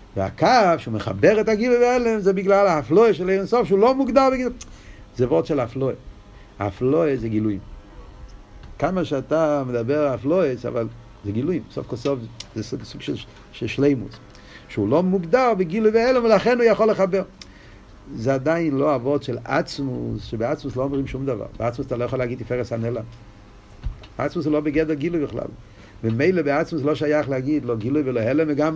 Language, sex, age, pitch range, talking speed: Hebrew, male, 50-69, 115-165 Hz, 175 wpm